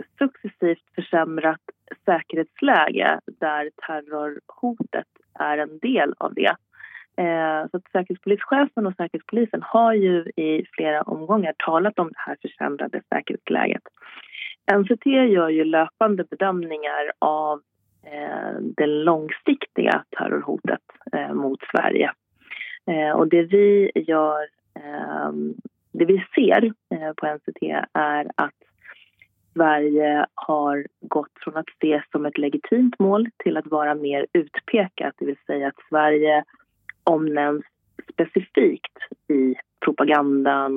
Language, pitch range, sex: Swedish, 150-195 Hz, female